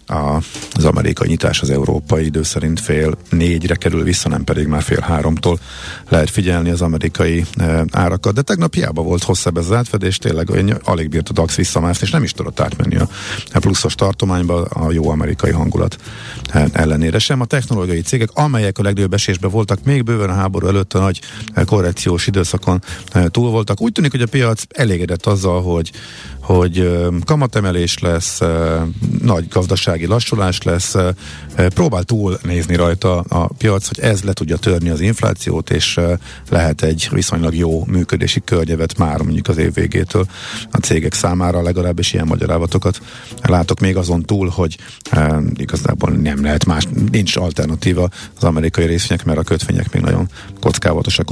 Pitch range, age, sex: 85-105 Hz, 50-69, male